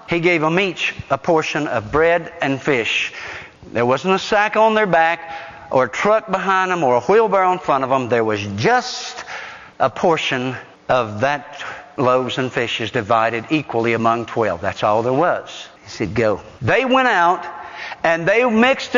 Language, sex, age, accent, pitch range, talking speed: English, male, 60-79, American, 170-270 Hz, 175 wpm